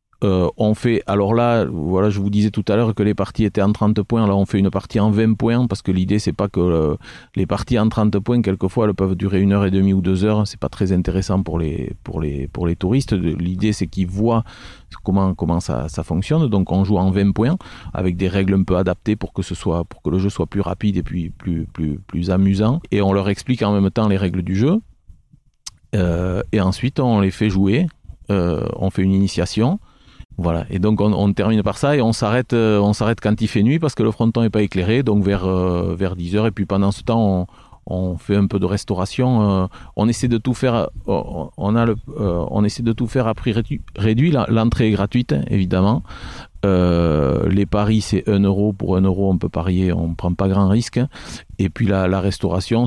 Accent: French